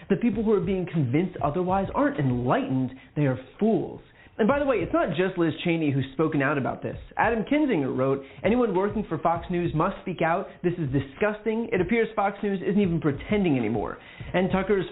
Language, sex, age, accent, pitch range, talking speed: English, male, 30-49, American, 140-195 Hz, 200 wpm